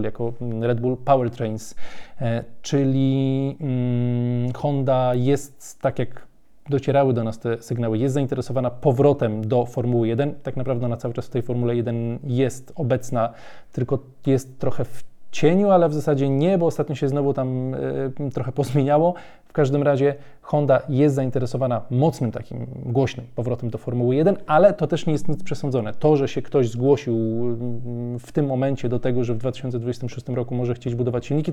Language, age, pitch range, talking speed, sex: Polish, 20-39, 120-145 Hz, 165 wpm, male